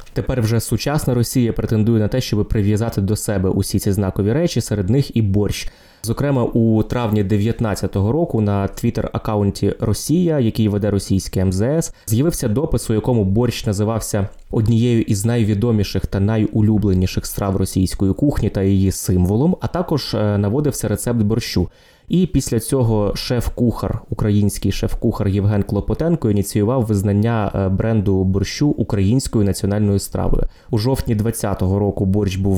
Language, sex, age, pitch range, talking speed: Ukrainian, male, 20-39, 100-120 Hz, 135 wpm